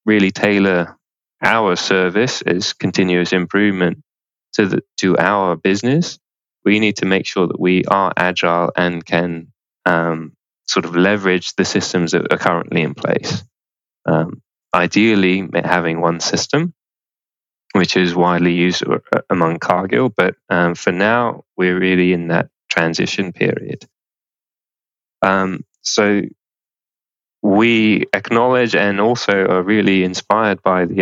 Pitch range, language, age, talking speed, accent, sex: 90-105 Hz, English, 20-39, 125 wpm, British, male